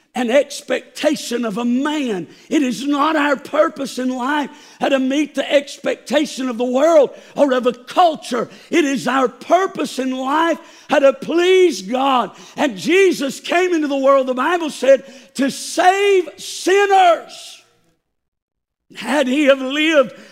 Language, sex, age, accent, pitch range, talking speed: English, male, 50-69, American, 255-315 Hz, 150 wpm